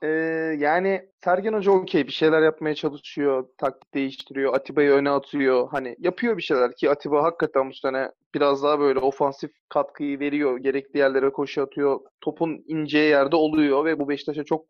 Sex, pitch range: male, 145-215 Hz